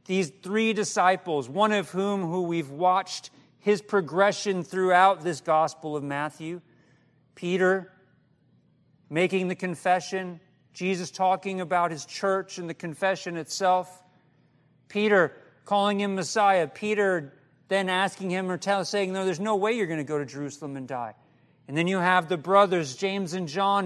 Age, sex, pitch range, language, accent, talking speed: 40-59, male, 155-205 Hz, English, American, 155 wpm